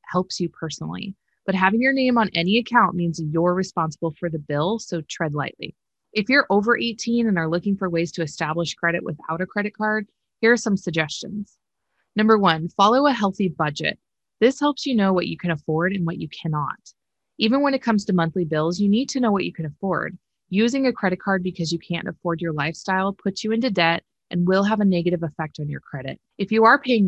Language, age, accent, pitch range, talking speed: English, 20-39, American, 165-210 Hz, 220 wpm